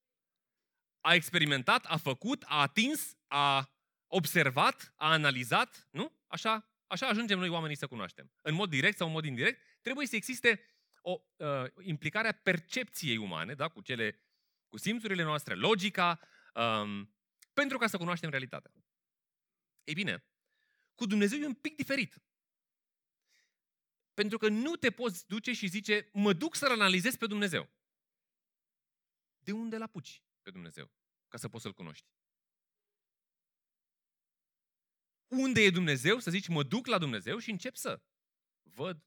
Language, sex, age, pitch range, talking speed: Romanian, male, 30-49, 150-220 Hz, 145 wpm